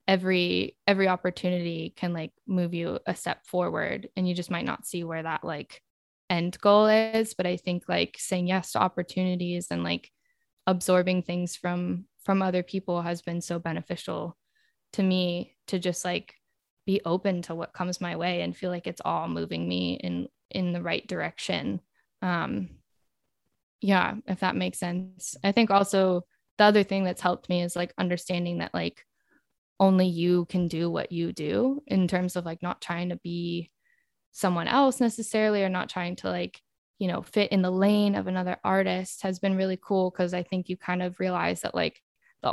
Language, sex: English, female